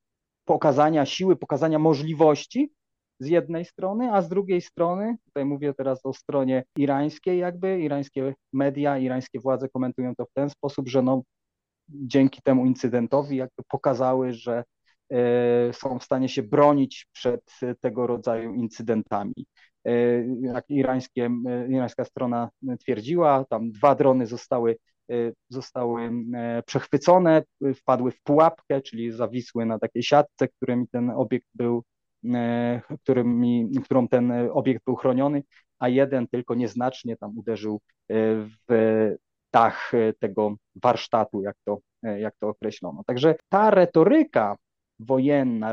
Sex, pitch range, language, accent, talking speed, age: male, 120-145 Hz, Polish, native, 125 wpm, 30-49